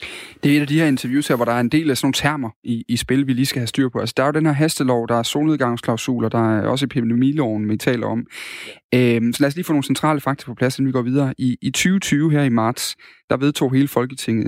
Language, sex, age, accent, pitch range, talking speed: Danish, male, 30-49, native, 115-145 Hz, 280 wpm